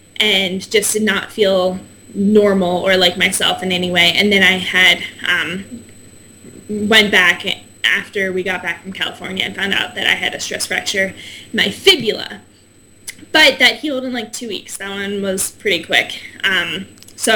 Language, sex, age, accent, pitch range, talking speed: English, female, 10-29, American, 195-235 Hz, 175 wpm